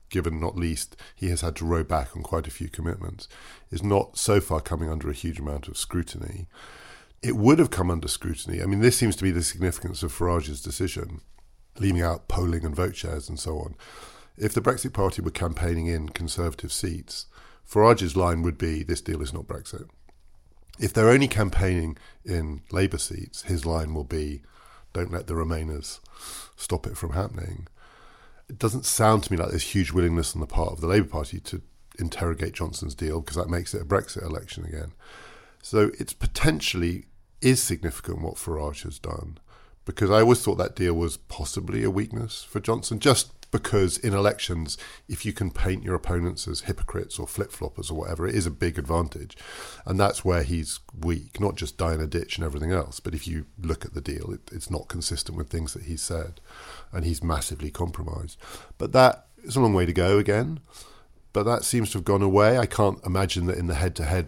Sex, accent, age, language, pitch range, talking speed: male, British, 50-69, English, 80-95 Hz, 205 wpm